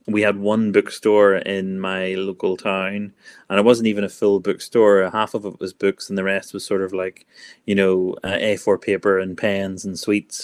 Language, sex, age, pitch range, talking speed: English, male, 30-49, 95-105 Hz, 205 wpm